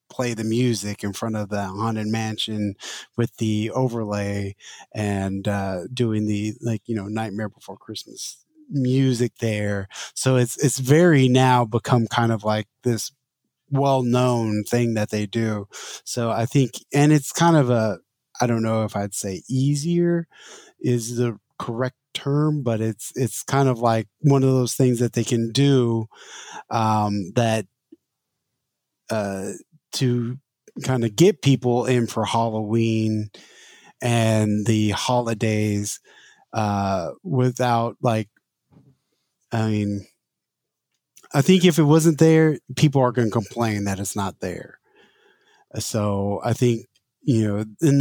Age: 20-39